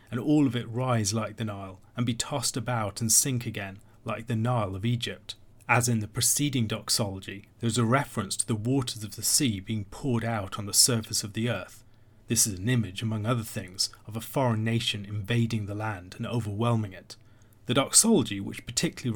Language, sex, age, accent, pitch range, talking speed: English, male, 30-49, British, 110-120 Hz, 205 wpm